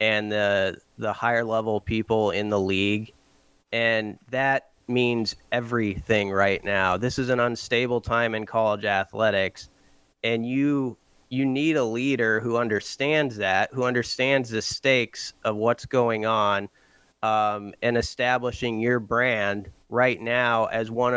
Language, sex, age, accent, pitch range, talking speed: English, male, 30-49, American, 110-130 Hz, 135 wpm